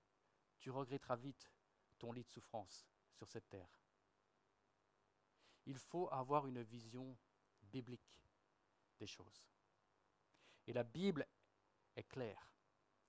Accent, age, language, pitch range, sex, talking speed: French, 50-69, French, 100-140 Hz, male, 105 wpm